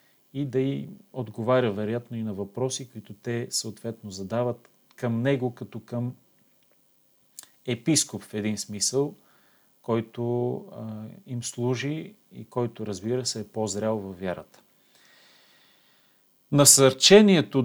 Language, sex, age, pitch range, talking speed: Bulgarian, male, 40-59, 110-135 Hz, 110 wpm